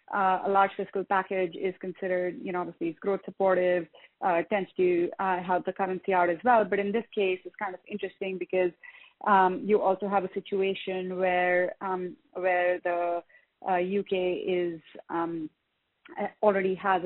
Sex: female